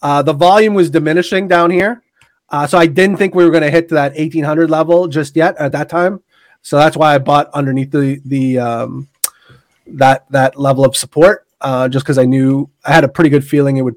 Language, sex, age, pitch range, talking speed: English, male, 30-49, 135-170 Hz, 230 wpm